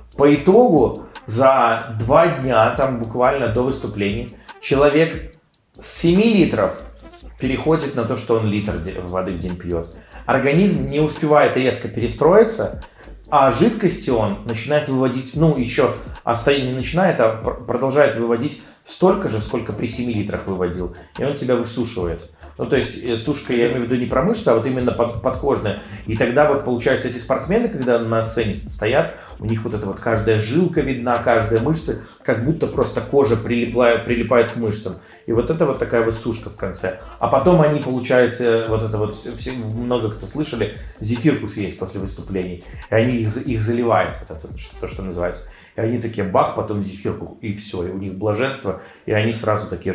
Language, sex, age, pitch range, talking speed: Russian, male, 30-49, 105-130 Hz, 180 wpm